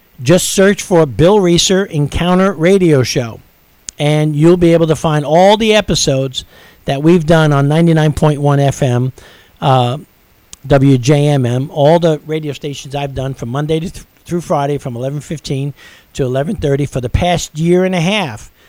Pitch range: 130-160 Hz